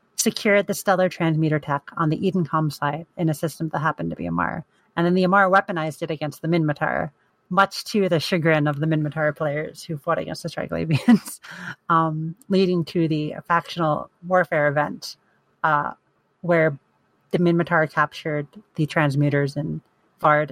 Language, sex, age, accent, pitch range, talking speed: English, female, 30-49, American, 150-180 Hz, 160 wpm